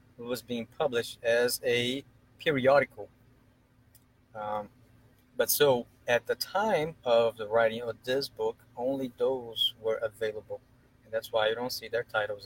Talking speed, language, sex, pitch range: 150 wpm, English, male, 115-150 Hz